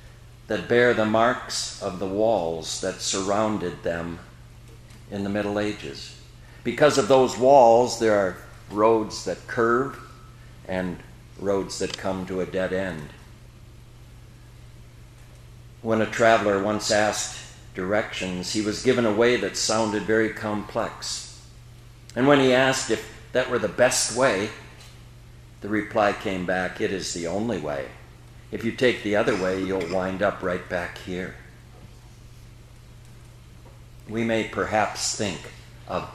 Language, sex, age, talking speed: English, male, 60-79, 135 wpm